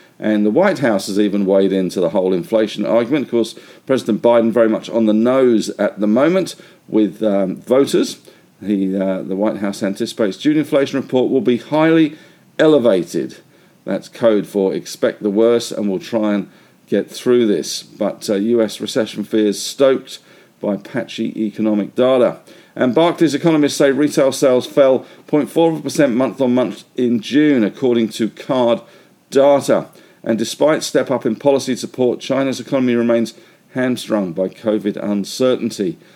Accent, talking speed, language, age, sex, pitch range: British, 150 wpm, English, 50-69, male, 105-140 Hz